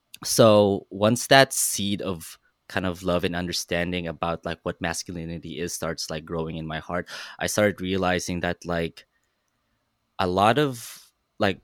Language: English